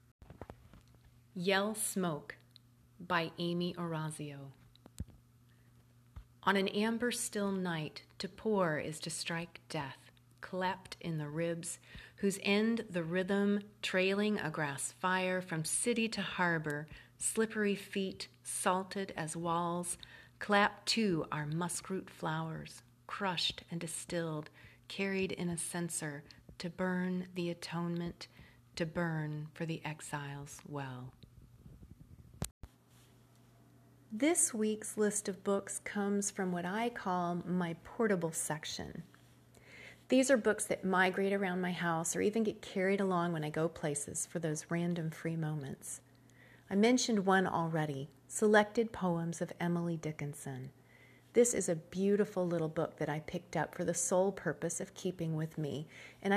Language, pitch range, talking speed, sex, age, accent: English, 150-195 Hz, 130 wpm, female, 40-59, American